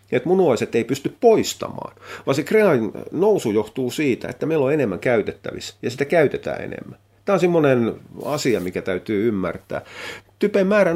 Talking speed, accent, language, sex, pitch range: 165 wpm, native, Finnish, male, 100-145 Hz